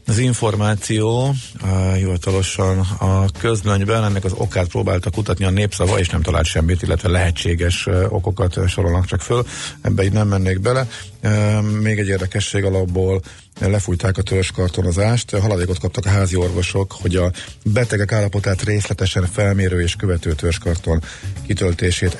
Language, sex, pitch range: Hungarian, male, 90-105 Hz